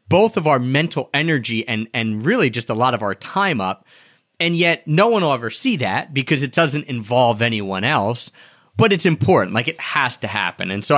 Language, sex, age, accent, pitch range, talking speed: English, male, 30-49, American, 120-150 Hz, 215 wpm